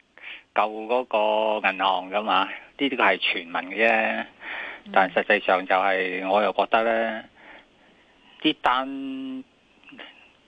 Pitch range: 100-130 Hz